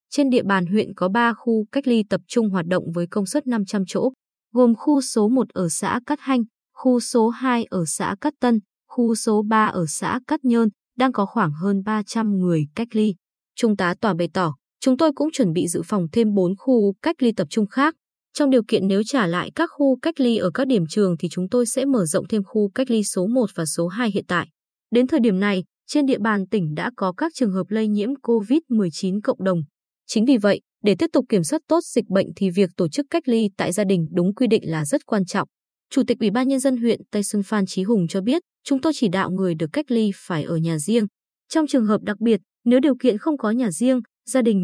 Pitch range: 190-250 Hz